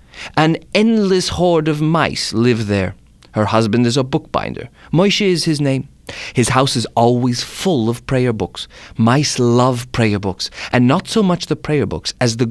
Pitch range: 95-140 Hz